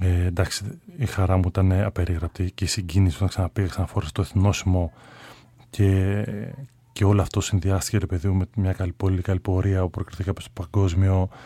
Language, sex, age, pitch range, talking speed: Greek, male, 30-49, 95-120 Hz, 160 wpm